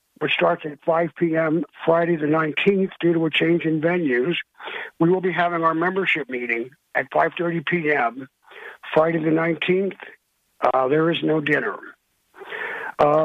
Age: 60-79